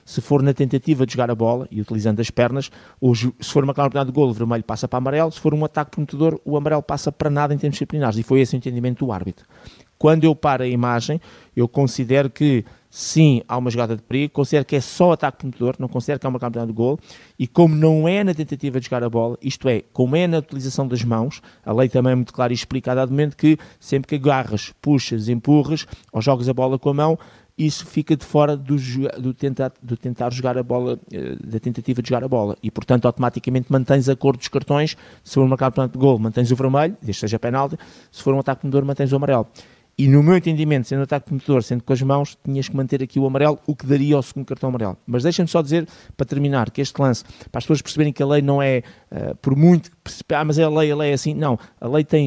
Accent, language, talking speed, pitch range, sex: Brazilian, Portuguese, 255 wpm, 125-150 Hz, male